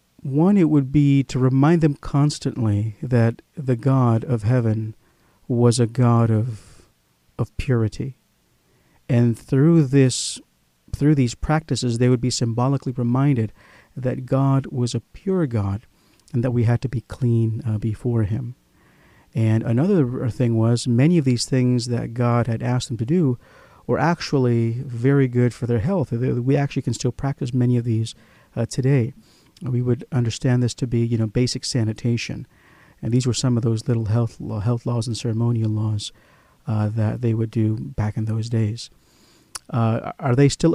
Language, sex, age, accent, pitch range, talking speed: English, male, 50-69, American, 115-135 Hz, 170 wpm